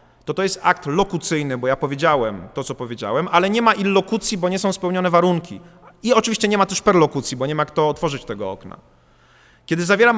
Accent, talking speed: native, 205 wpm